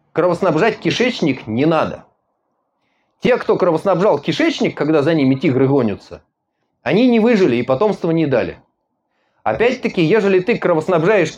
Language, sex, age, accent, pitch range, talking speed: Russian, male, 30-49, native, 130-195 Hz, 125 wpm